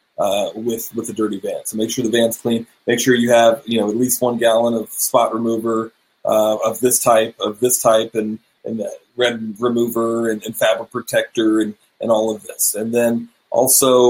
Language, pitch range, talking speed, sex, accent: English, 110-125 Hz, 205 wpm, male, American